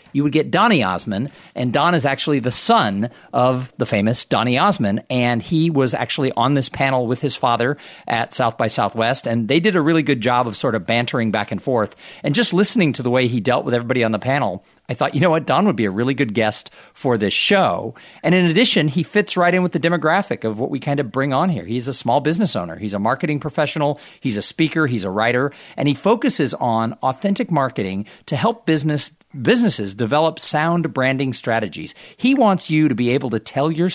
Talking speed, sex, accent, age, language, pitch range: 225 wpm, male, American, 50-69, English, 120-165 Hz